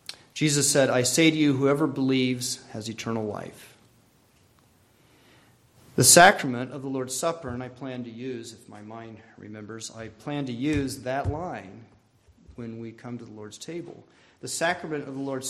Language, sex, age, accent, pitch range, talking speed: English, male, 40-59, American, 120-145 Hz, 170 wpm